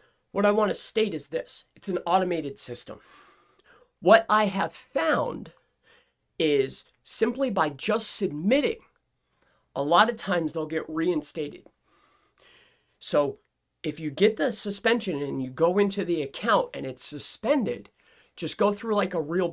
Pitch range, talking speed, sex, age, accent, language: 180-250 Hz, 150 wpm, male, 30-49, American, English